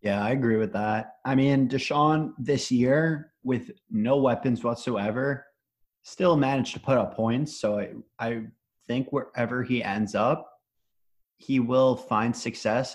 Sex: male